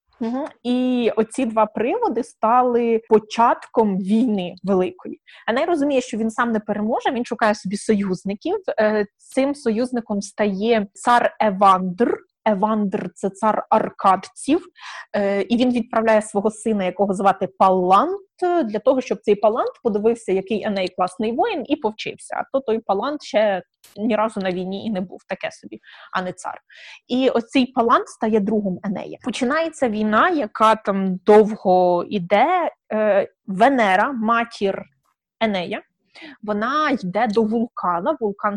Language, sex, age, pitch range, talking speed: Ukrainian, female, 20-39, 200-250 Hz, 140 wpm